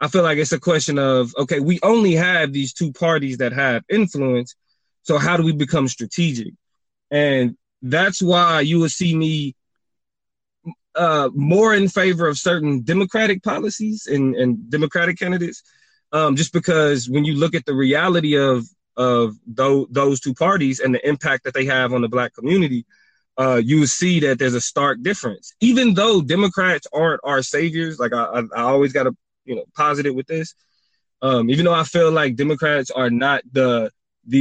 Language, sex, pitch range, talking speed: English, male, 130-165 Hz, 180 wpm